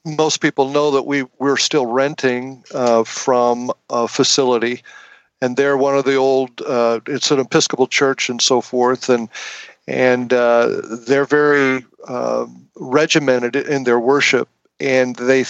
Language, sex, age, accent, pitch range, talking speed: English, male, 50-69, American, 125-140 Hz, 140 wpm